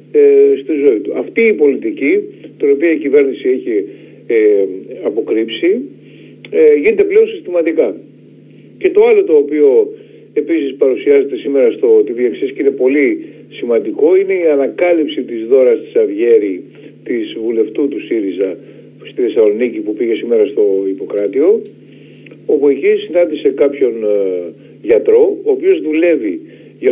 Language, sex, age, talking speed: Greek, male, 50-69, 130 wpm